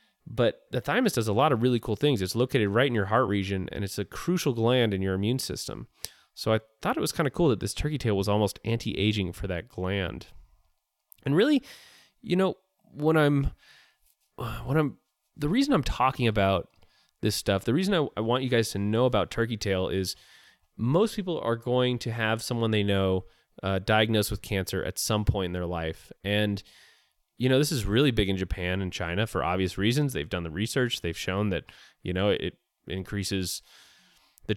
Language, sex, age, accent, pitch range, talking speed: English, male, 20-39, American, 100-130 Hz, 205 wpm